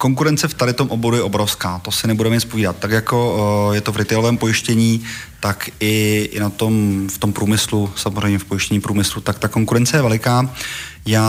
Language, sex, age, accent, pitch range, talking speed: Czech, male, 30-49, native, 105-115 Hz, 200 wpm